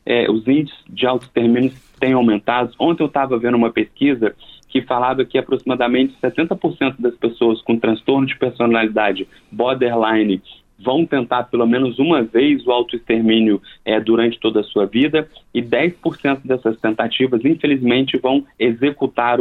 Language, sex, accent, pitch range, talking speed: Portuguese, male, Brazilian, 120-160 Hz, 145 wpm